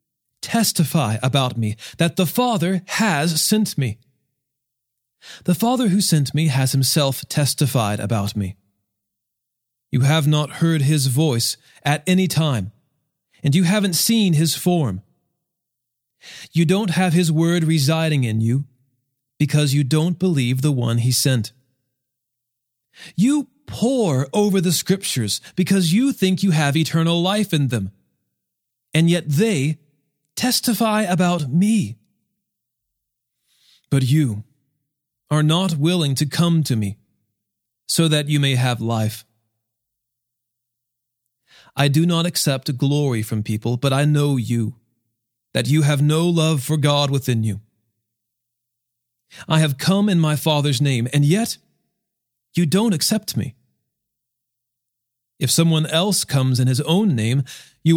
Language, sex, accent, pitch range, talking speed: English, male, American, 120-165 Hz, 130 wpm